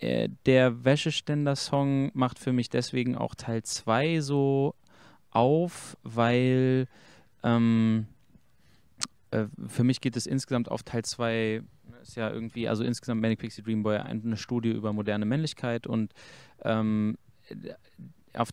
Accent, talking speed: German, 125 wpm